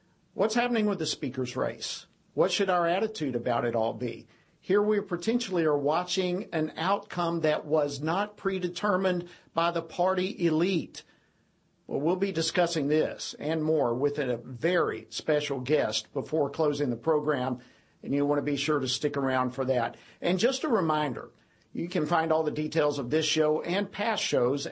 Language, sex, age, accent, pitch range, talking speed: English, male, 50-69, American, 145-185 Hz, 175 wpm